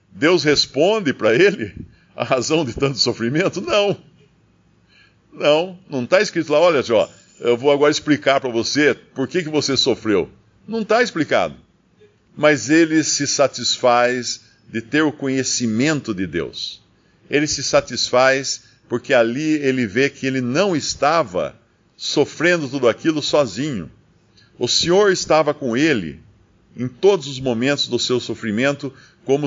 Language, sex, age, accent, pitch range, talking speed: Portuguese, male, 50-69, Brazilian, 120-155 Hz, 140 wpm